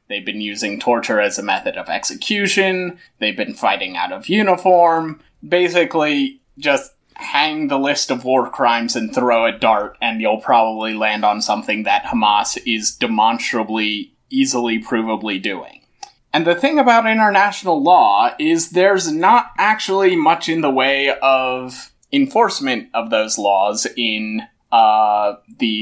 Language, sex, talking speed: English, male, 145 wpm